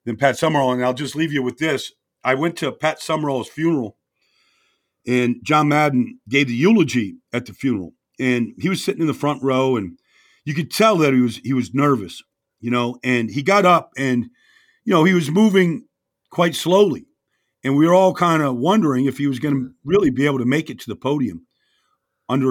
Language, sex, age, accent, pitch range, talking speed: English, male, 50-69, American, 130-165 Hz, 210 wpm